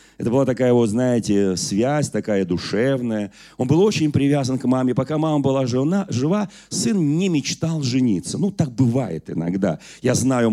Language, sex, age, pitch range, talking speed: Russian, male, 40-59, 110-150 Hz, 165 wpm